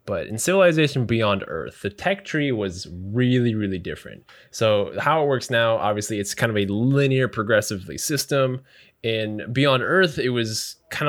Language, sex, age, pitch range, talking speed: English, male, 10-29, 105-130 Hz, 170 wpm